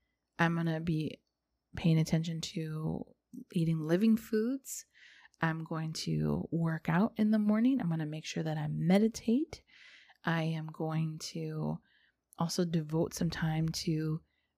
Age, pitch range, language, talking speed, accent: 20-39, 155-200 Hz, English, 145 wpm, American